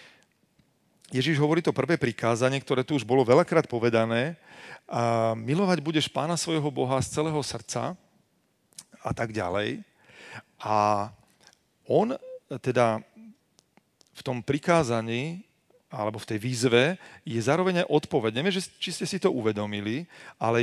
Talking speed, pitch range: 120 wpm, 115-165 Hz